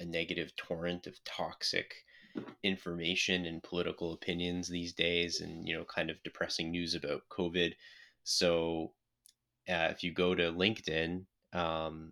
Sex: male